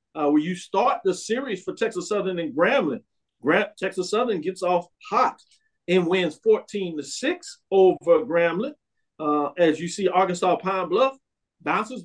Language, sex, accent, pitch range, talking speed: English, male, American, 160-220 Hz, 160 wpm